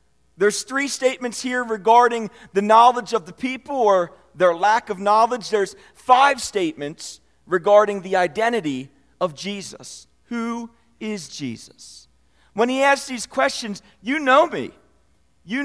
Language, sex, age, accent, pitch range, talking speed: English, male, 40-59, American, 190-250 Hz, 135 wpm